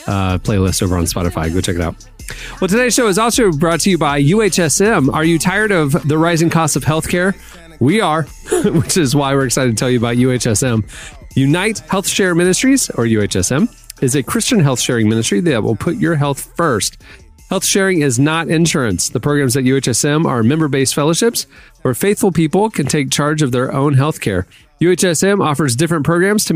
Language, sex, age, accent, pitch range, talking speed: English, male, 30-49, American, 130-185 Hz, 190 wpm